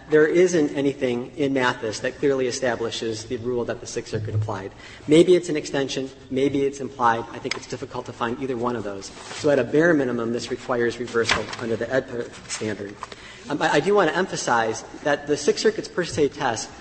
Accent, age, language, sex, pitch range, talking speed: American, 40-59, English, male, 125-150 Hz, 205 wpm